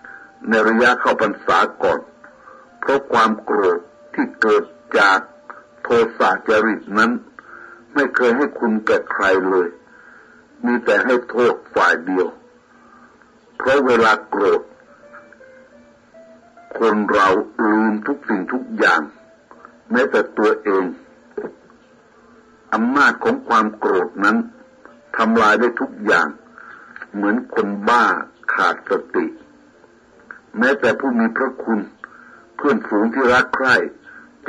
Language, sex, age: Thai, male, 60-79